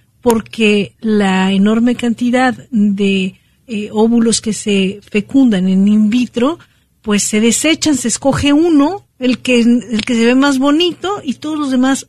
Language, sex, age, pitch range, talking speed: Spanish, female, 50-69, 215-260 Hz, 155 wpm